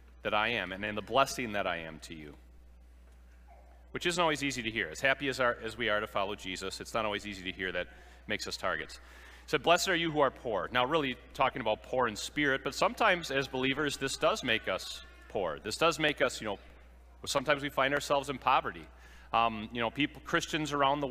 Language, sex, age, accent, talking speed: English, male, 40-59, American, 230 wpm